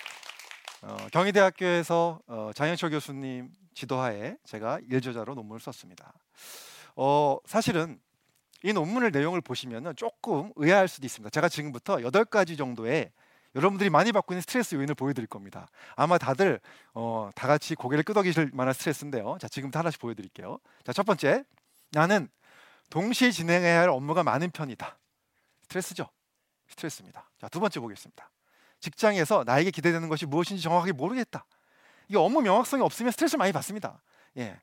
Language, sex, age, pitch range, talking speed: English, male, 30-49, 135-200 Hz, 130 wpm